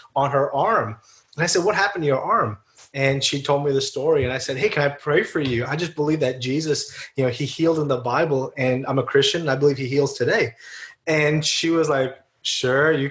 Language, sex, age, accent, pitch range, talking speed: English, male, 20-39, American, 130-155 Hz, 245 wpm